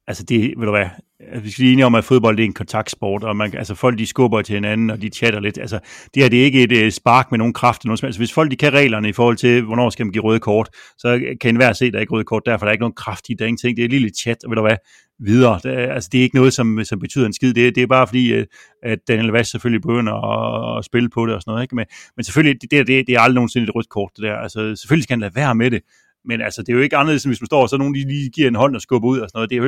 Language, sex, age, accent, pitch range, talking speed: Danish, male, 30-49, native, 115-130 Hz, 320 wpm